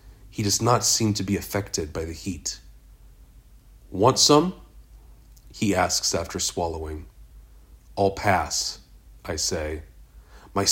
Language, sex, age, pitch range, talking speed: English, male, 30-49, 85-105 Hz, 120 wpm